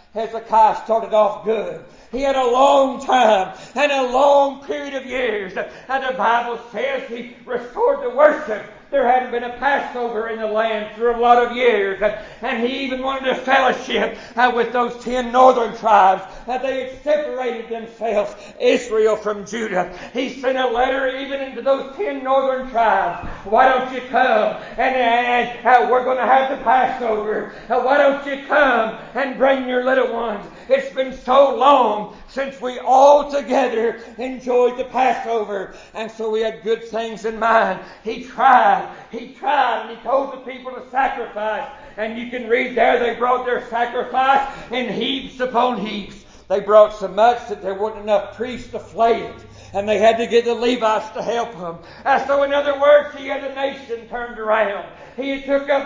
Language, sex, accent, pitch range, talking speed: English, male, American, 220-265 Hz, 180 wpm